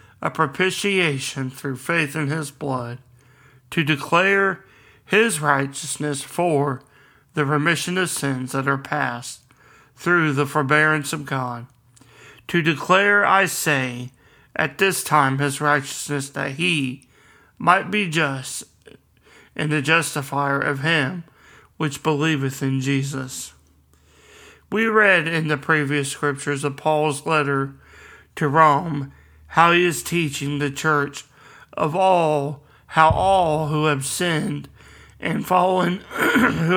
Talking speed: 120 wpm